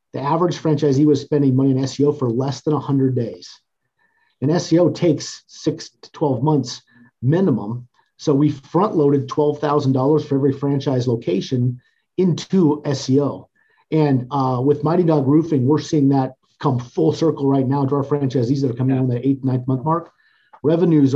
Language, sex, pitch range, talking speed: English, male, 130-150 Hz, 170 wpm